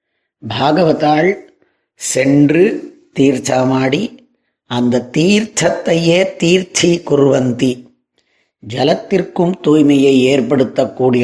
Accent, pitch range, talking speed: native, 120-140 Hz, 55 wpm